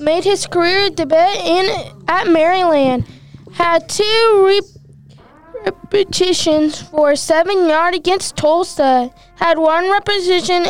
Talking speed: 105 wpm